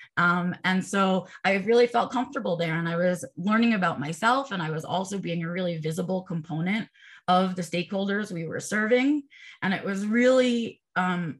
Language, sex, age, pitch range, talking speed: English, female, 20-39, 170-210 Hz, 180 wpm